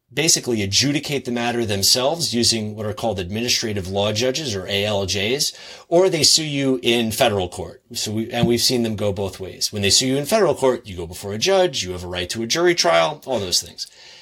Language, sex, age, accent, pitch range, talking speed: English, male, 30-49, American, 105-130 Hz, 220 wpm